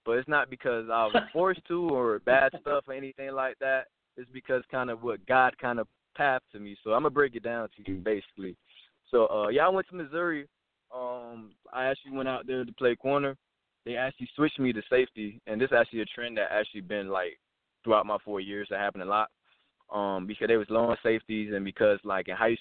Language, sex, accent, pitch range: English, male, American, 110-140 Hz